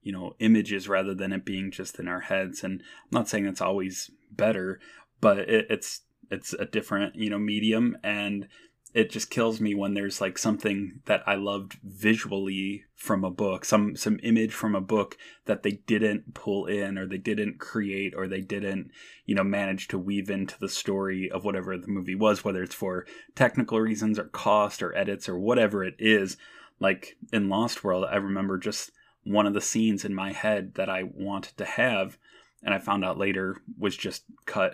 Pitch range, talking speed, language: 95-105 Hz, 195 wpm, English